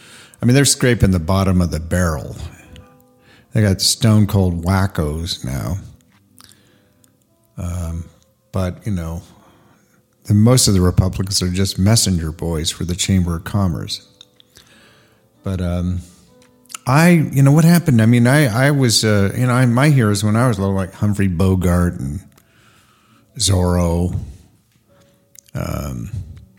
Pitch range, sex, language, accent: 95-110 Hz, male, English, American